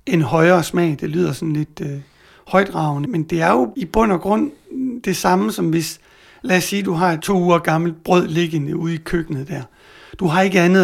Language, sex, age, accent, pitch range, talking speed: Danish, male, 60-79, native, 165-190 Hz, 220 wpm